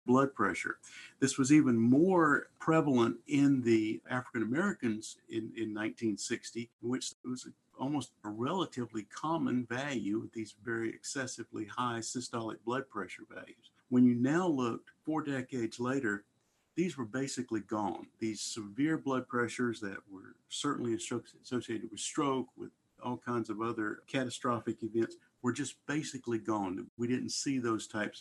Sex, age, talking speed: male, 50-69, 150 wpm